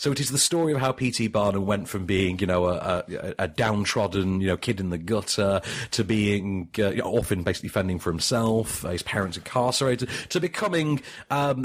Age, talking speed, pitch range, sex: 30-49, 210 wpm, 100-135 Hz, male